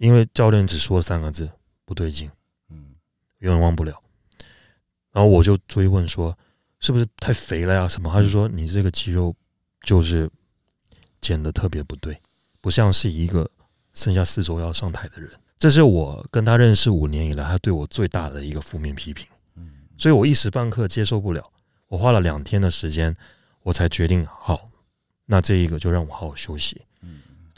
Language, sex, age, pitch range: Chinese, male, 30-49, 80-105 Hz